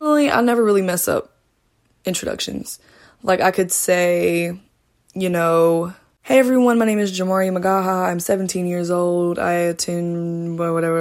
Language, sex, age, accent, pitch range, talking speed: English, female, 20-39, American, 170-220 Hz, 145 wpm